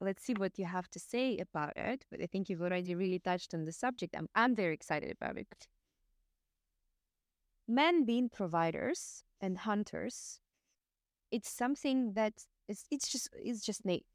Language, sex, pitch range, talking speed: English, female, 160-215 Hz, 155 wpm